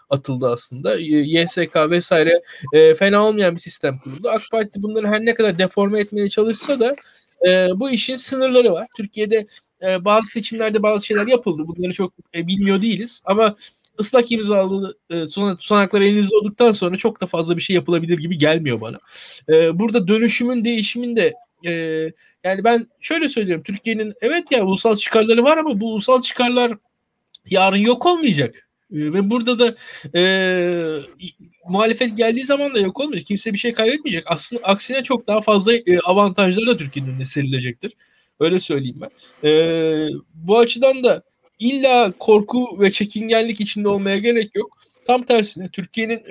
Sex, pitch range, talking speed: male, 175-230 Hz, 155 wpm